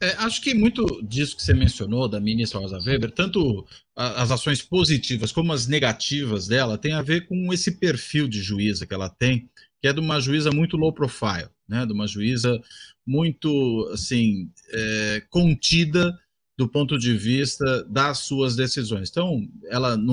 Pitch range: 110-150 Hz